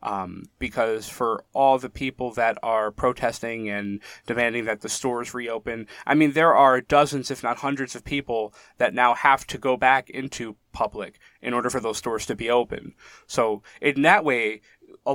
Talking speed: 180 wpm